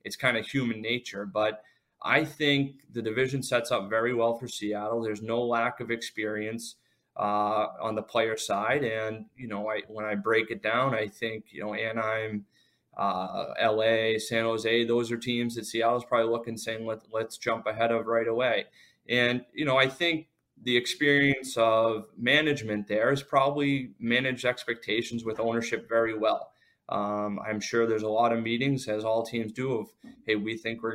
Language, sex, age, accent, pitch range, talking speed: English, male, 20-39, American, 110-120 Hz, 180 wpm